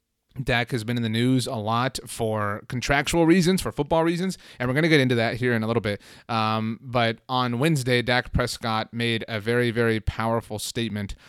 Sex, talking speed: male, 200 wpm